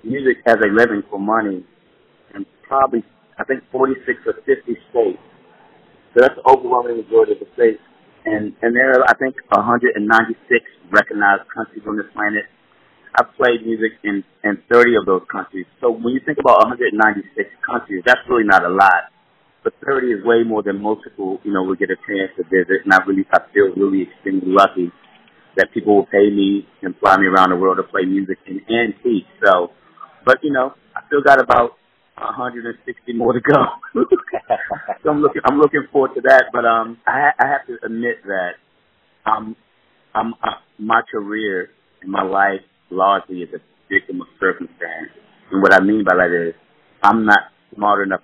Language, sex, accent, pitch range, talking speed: English, male, American, 95-125 Hz, 190 wpm